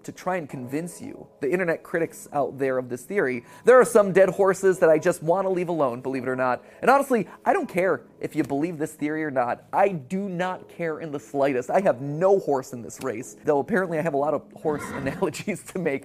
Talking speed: 245 wpm